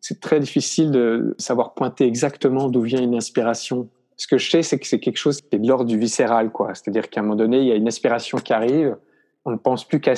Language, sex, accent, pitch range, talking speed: French, male, French, 115-140 Hz, 260 wpm